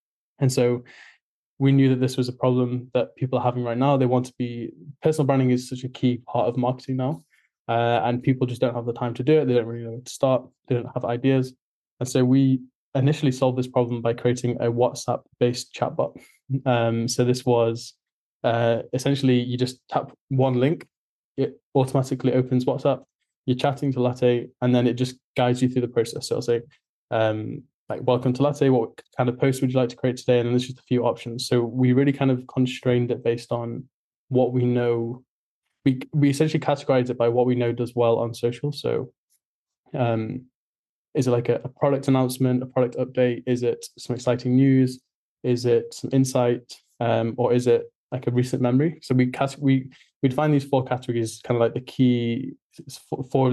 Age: 20-39